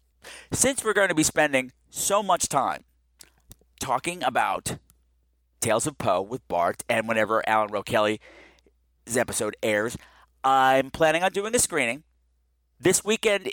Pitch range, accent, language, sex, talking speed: 105-155 Hz, American, English, male, 135 wpm